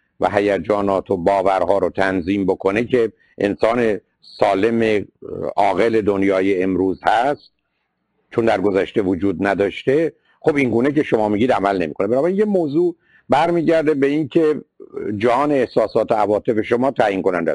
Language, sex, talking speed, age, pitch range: Persian, male, 135 wpm, 50-69, 100-135 Hz